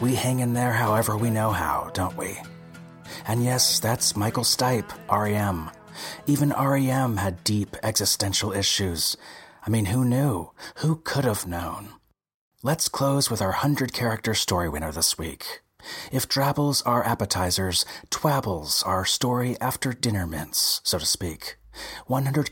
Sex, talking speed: male, 140 wpm